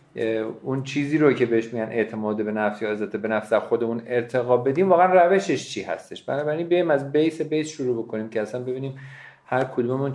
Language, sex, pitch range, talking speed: Persian, male, 115-145 Hz, 195 wpm